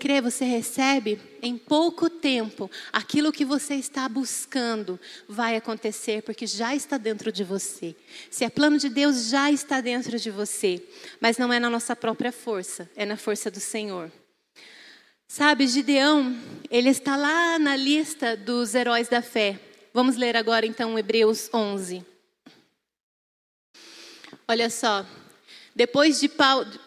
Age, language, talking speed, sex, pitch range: 30-49, Portuguese, 140 wpm, female, 220-280 Hz